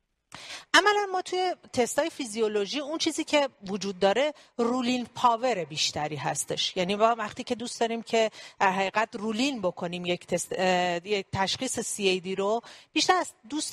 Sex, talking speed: female, 135 wpm